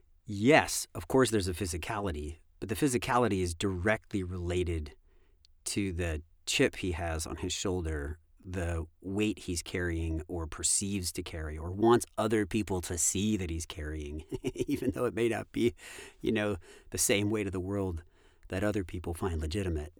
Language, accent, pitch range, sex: English, American, 80-110 Hz, male